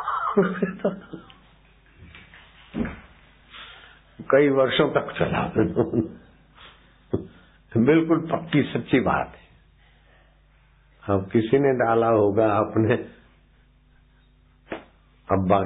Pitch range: 90-110 Hz